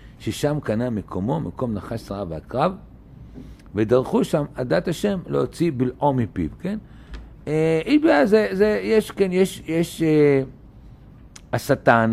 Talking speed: 120 wpm